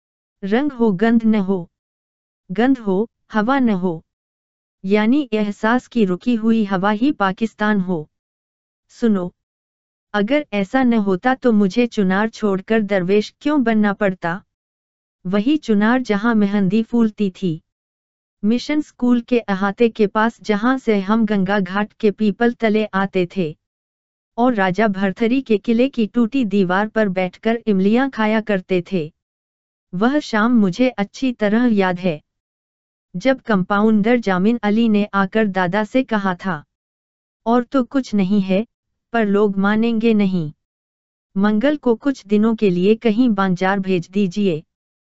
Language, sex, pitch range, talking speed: Hindi, female, 180-230 Hz, 140 wpm